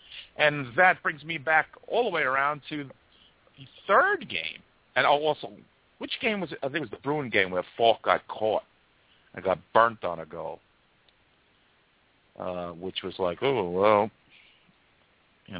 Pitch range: 90-140 Hz